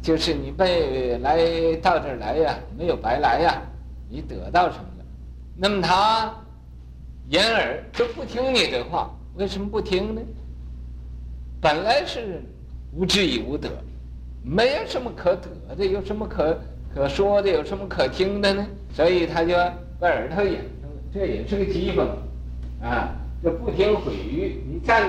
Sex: male